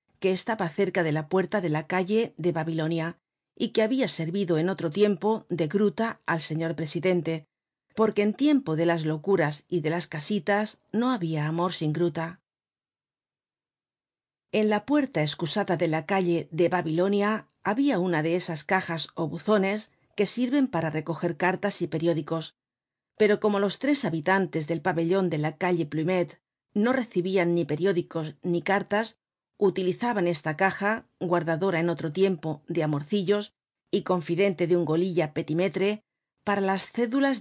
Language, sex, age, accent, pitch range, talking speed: Spanish, female, 40-59, Spanish, 165-200 Hz, 155 wpm